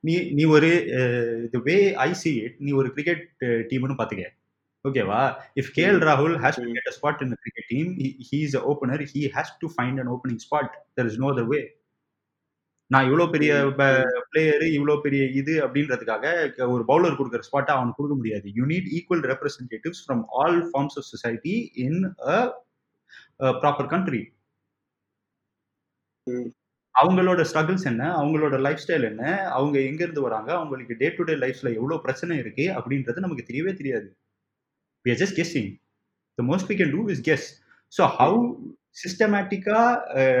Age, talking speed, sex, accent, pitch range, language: 20-39, 65 wpm, male, native, 130-180 Hz, Tamil